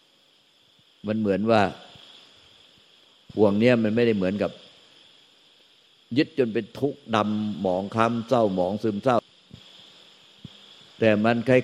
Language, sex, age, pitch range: Thai, male, 60-79, 100-115 Hz